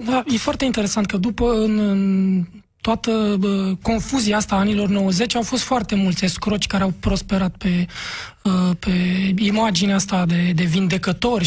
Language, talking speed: Romanian, 150 wpm